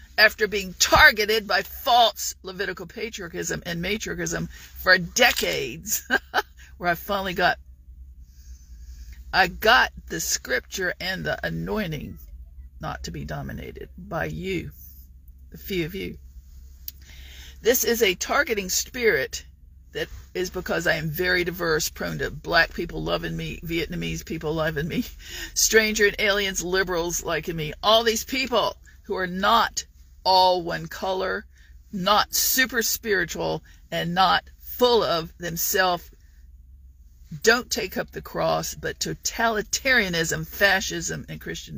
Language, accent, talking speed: English, American, 125 wpm